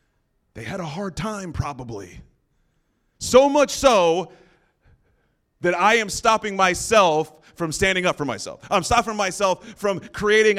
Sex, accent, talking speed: male, American, 135 wpm